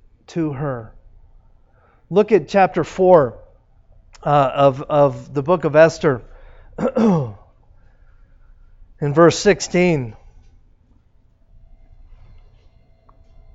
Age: 40-59